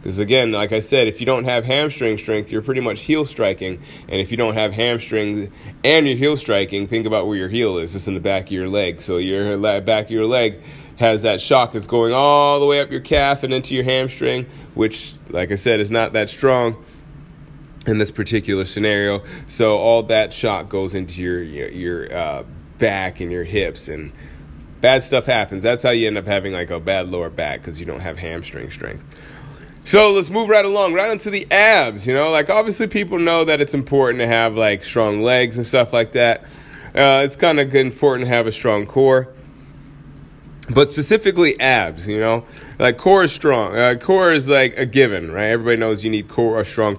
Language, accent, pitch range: English, American, 105-145 Hz